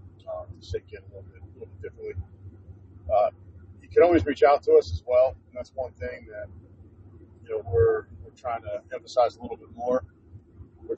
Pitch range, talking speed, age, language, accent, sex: 90-125 Hz, 185 wpm, 40-59, English, American, male